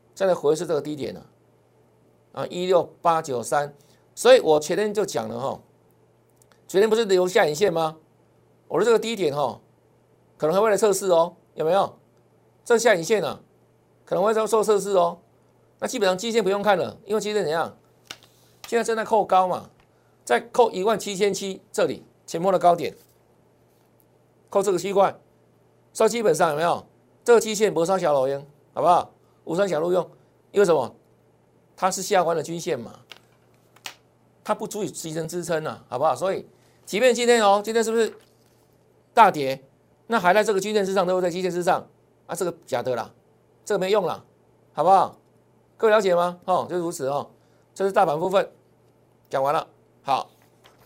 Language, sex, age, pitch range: Chinese, male, 50-69, 175-220 Hz